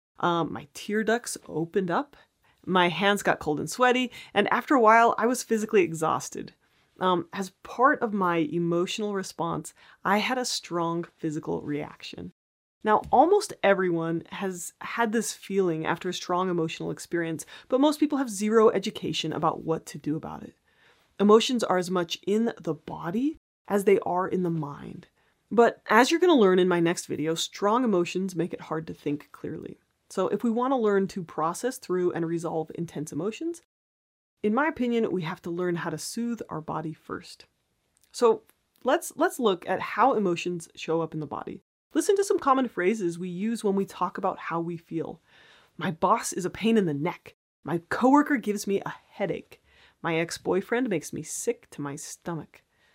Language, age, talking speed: English, 30-49, 180 wpm